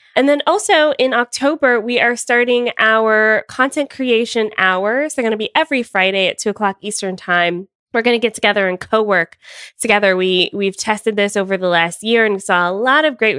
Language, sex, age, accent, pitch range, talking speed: English, female, 20-39, American, 190-245 Hz, 195 wpm